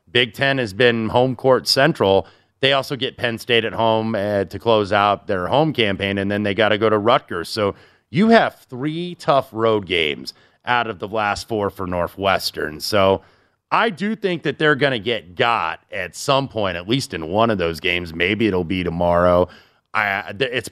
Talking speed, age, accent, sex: 195 wpm, 30-49, American, male